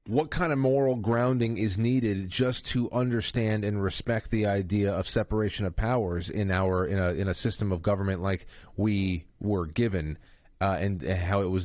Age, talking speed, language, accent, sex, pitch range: 30-49, 185 wpm, English, American, male, 100-120 Hz